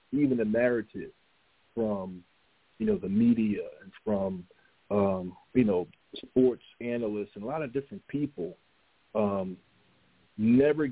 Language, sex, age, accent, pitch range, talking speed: English, male, 40-59, American, 105-145 Hz, 125 wpm